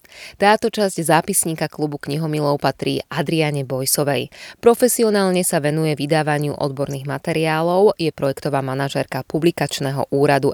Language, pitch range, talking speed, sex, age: Slovak, 140-185 Hz, 110 wpm, female, 20-39